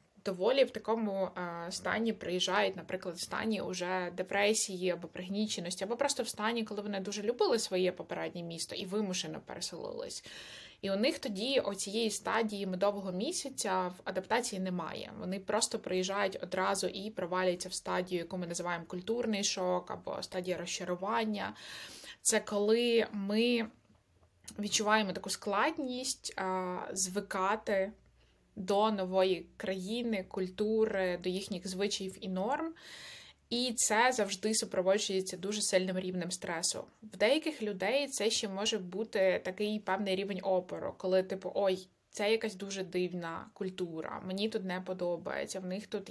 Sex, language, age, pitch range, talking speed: female, Ukrainian, 20-39, 185-215 Hz, 135 wpm